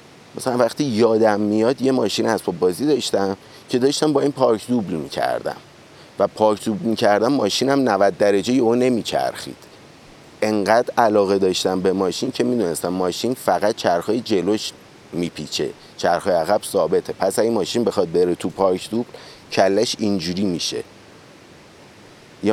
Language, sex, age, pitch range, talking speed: Persian, male, 30-49, 95-120 Hz, 155 wpm